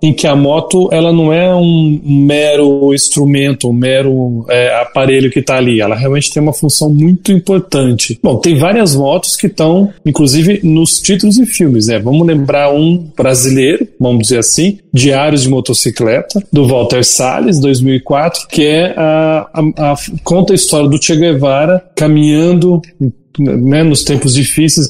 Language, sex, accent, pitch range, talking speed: Portuguese, male, Brazilian, 130-165 Hz, 160 wpm